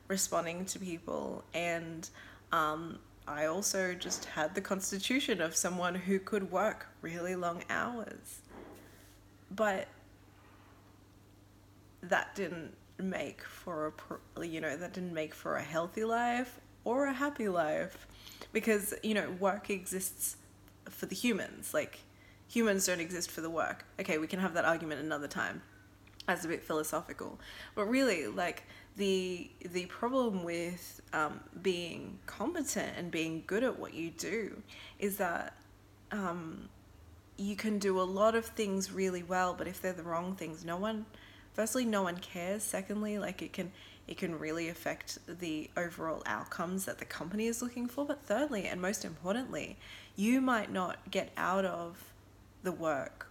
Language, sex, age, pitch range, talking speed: English, female, 20-39, 155-200 Hz, 155 wpm